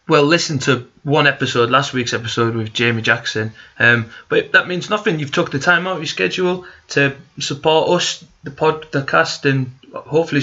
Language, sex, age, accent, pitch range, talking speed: English, male, 20-39, British, 125-150 Hz, 190 wpm